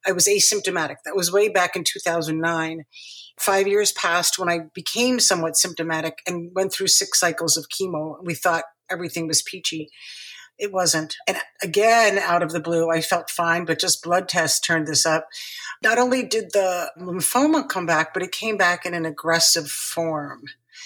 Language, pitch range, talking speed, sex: English, 170-210 Hz, 180 wpm, female